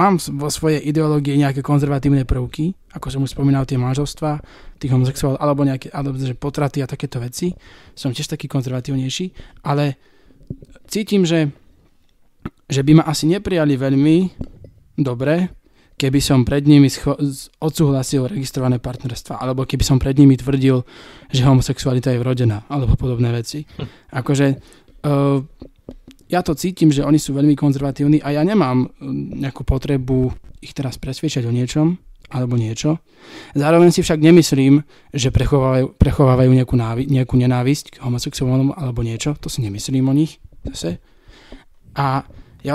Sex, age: male, 20-39